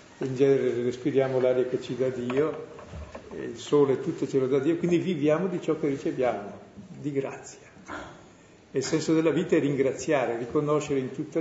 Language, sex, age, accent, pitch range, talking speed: Italian, male, 50-69, native, 125-160 Hz, 175 wpm